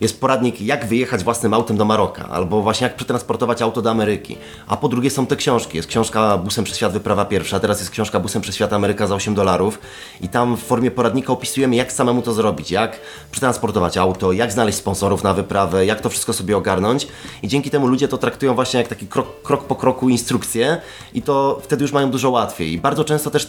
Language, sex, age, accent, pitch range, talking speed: Polish, male, 30-49, native, 110-135 Hz, 220 wpm